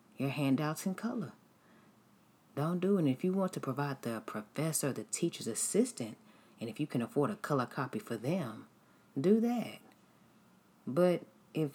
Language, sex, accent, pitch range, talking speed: English, female, American, 120-175 Hz, 165 wpm